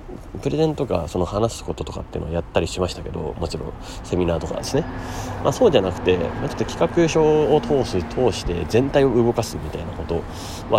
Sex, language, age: male, Japanese, 30-49